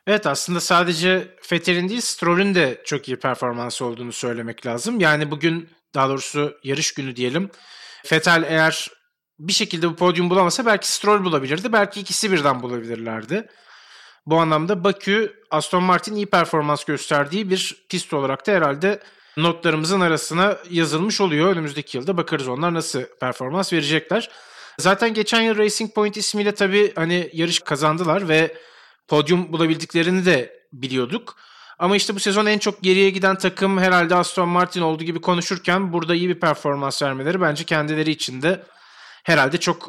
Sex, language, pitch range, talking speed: male, Turkish, 150-190 Hz, 150 wpm